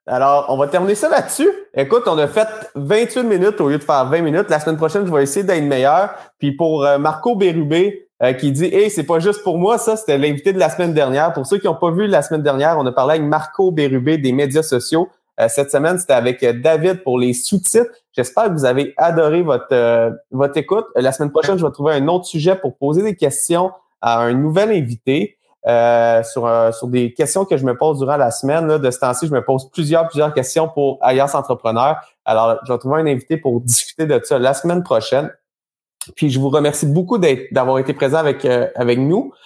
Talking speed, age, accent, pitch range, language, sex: 235 wpm, 30-49, Canadian, 130-175 Hz, French, male